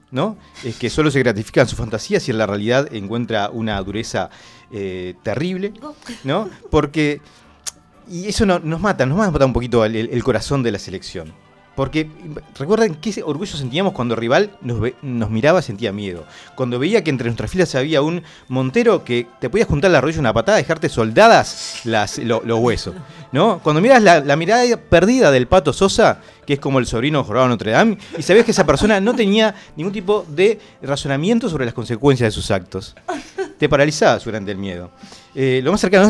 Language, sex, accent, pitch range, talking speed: Spanish, male, Argentinian, 115-190 Hz, 190 wpm